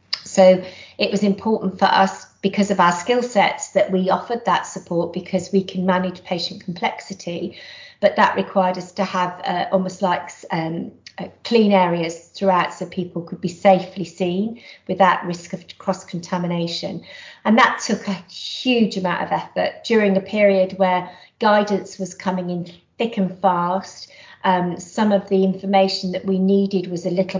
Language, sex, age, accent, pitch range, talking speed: English, female, 40-59, British, 180-200 Hz, 170 wpm